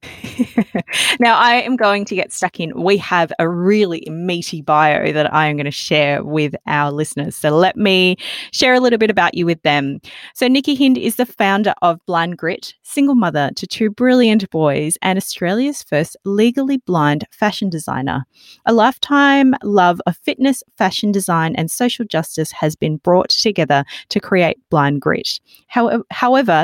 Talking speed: 170 wpm